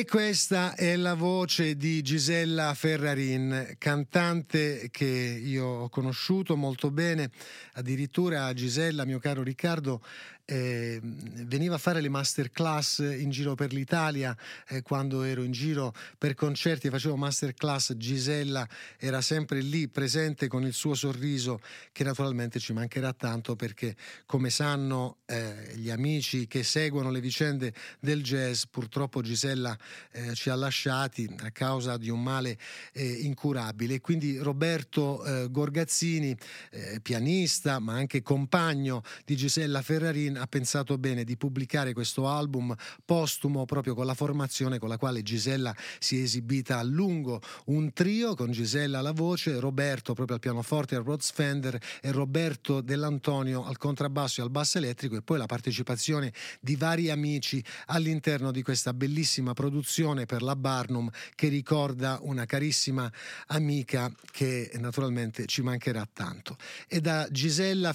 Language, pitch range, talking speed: Italian, 125-150 Hz, 140 wpm